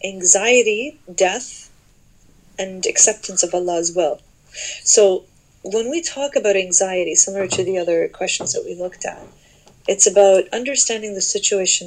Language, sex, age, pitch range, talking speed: English, female, 30-49, 180-210 Hz, 135 wpm